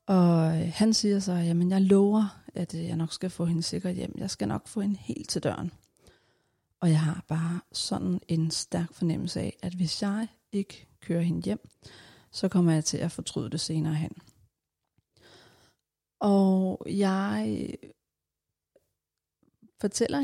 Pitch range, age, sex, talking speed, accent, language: 165-200 Hz, 30-49, female, 150 wpm, native, Danish